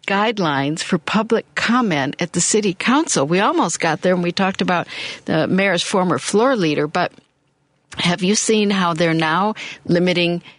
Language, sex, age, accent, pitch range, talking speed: English, female, 60-79, American, 155-210 Hz, 165 wpm